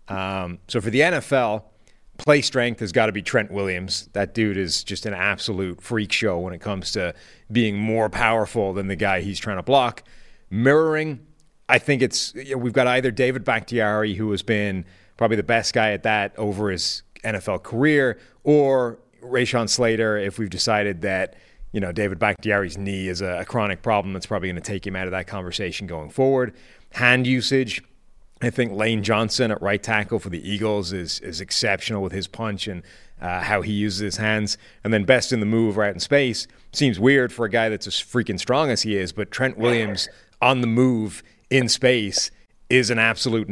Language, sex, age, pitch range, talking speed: English, male, 30-49, 100-120 Hz, 195 wpm